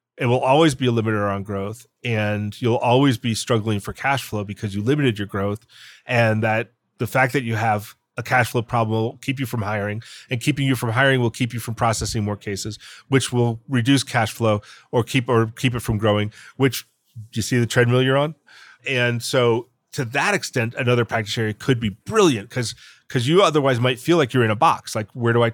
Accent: American